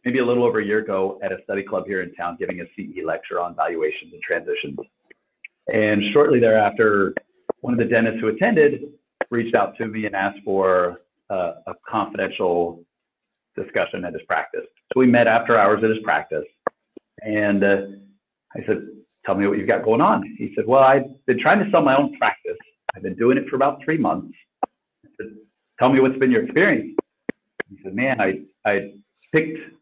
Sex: male